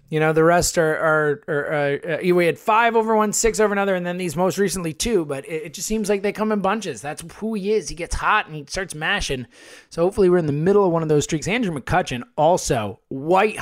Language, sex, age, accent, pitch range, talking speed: English, male, 20-39, American, 130-180 Hz, 260 wpm